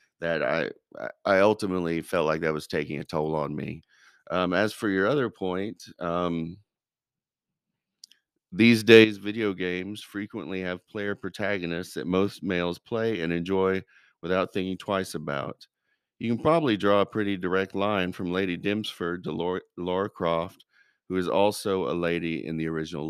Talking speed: 160 wpm